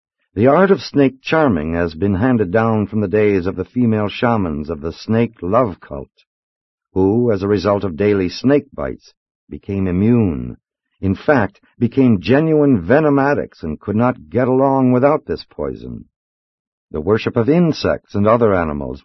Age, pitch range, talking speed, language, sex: 60-79, 90-115 Hz, 165 wpm, English, male